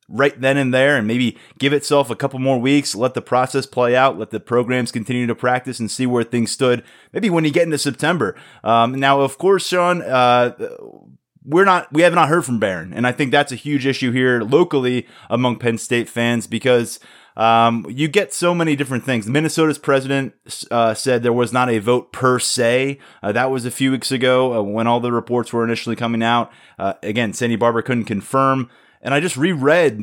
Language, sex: English, male